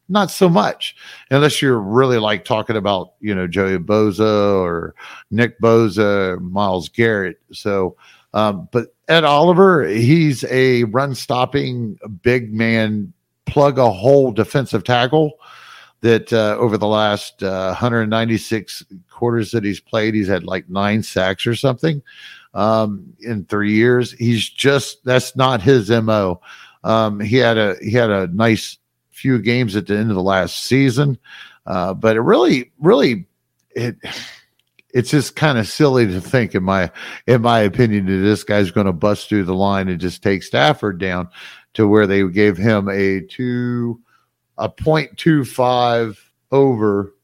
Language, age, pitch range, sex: English, 50-69, 100-130 Hz, male